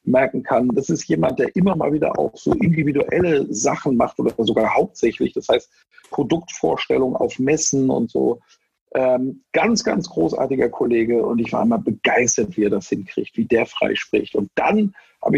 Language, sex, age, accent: German, male, 50-69, German